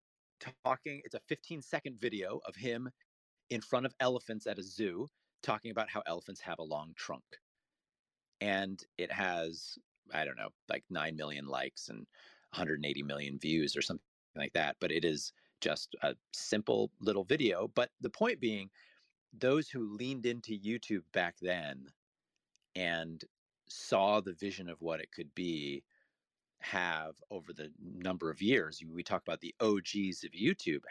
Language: English